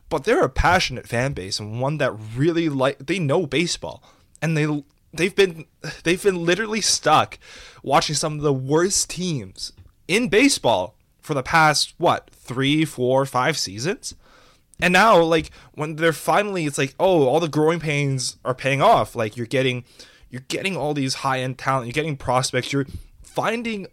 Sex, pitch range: male, 125-170 Hz